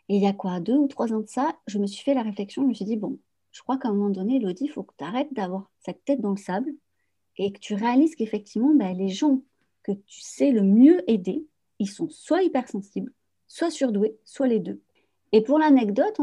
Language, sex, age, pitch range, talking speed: French, female, 40-59, 195-265 Hz, 240 wpm